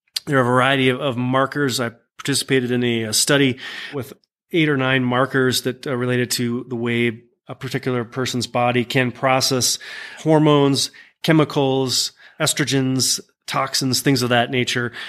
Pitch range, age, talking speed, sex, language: 120-140 Hz, 30-49, 145 wpm, male, English